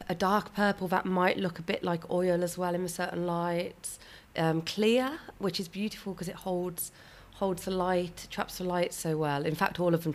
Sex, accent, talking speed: female, British, 220 wpm